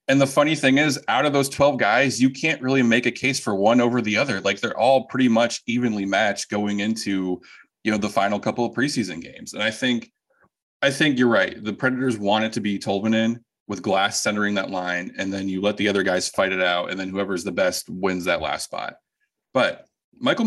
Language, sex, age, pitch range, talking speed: English, male, 20-39, 95-120 Hz, 230 wpm